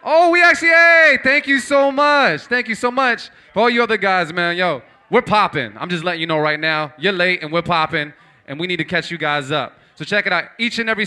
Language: English